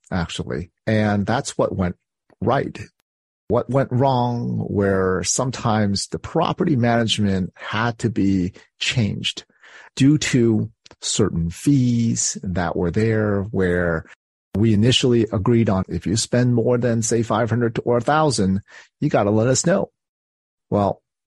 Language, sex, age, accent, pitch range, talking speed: English, male, 40-59, American, 95-120 Hz, 135 wpm